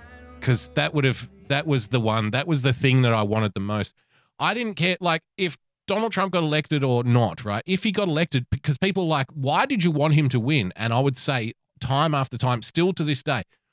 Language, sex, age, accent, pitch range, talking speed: English, male, 30-49, Australian, 115-155 Hz, 240 wpm